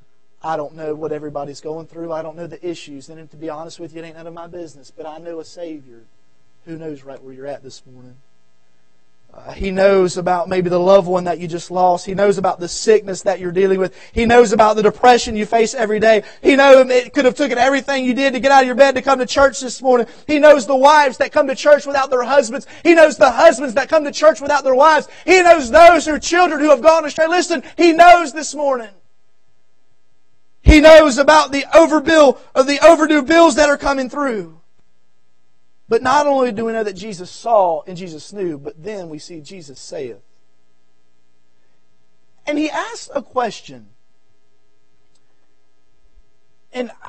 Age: 30-49